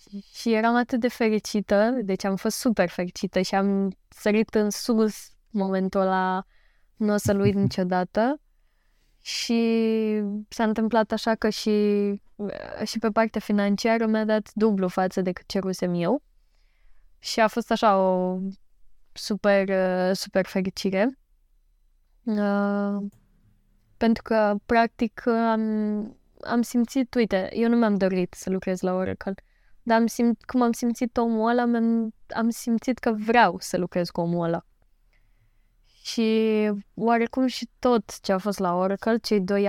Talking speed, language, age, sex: 140 wpm, Romanian, 10-29, female